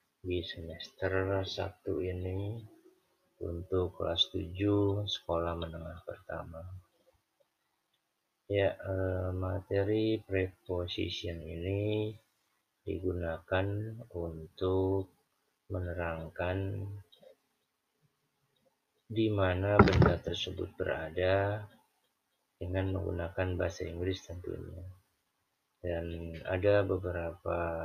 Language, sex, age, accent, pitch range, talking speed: Indonesian, male, 30-49, native, 85-100 Hz, 65 wpm